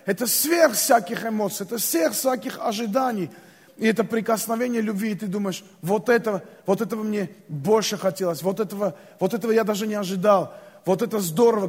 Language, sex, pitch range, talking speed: Russian, male, 205-245 Hz, 170 wpm